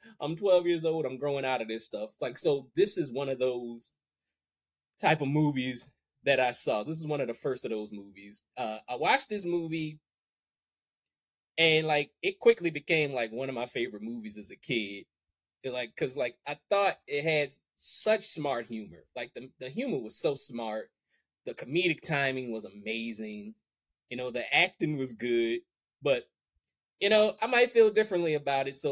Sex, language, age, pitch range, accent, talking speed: male, English, 20-39, 110-160 Hz, American, 190 wpm